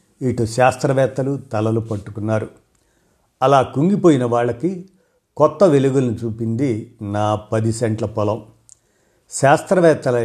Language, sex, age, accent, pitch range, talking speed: Telugu, male, 50-69, native, 110-140 Hz, 90 wpm